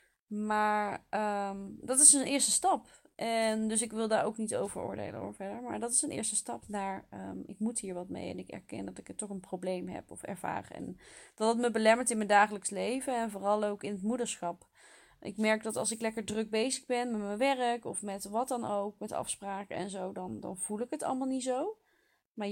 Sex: female